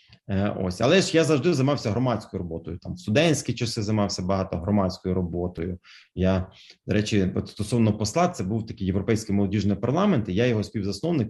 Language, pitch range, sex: Ukrainian, 100-120 Hz, male